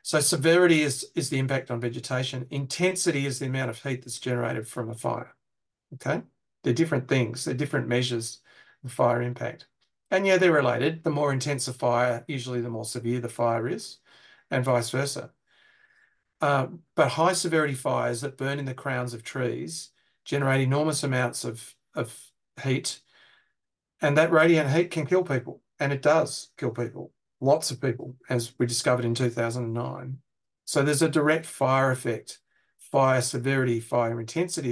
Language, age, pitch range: English, 40-59, 120-145 Hz